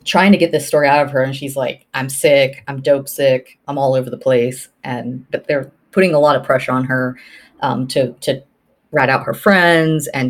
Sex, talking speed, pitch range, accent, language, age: female, 225 wpm, 135-175 Hz, American, English, 30-49